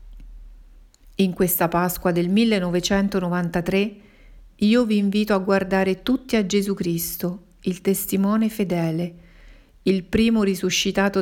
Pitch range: 180-205 Hz